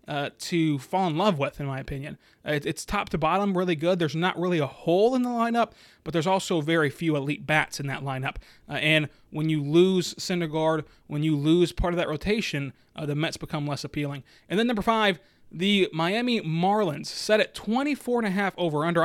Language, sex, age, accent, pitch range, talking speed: English, male, 20-39, American, 150-200 Hz, 215 wpm